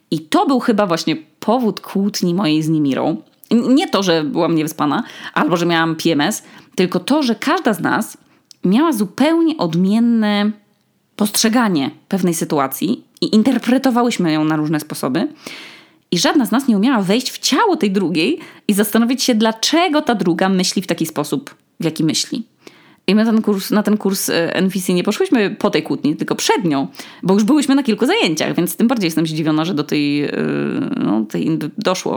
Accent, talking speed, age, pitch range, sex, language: native, 170 wpm, 20-39, 170-250 Hz, female, Polish